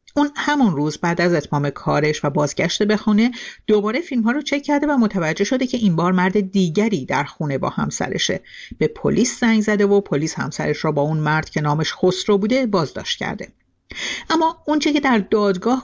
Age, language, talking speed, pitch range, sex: 50-69, Persian, 190 wpm, 155-210 Hz, female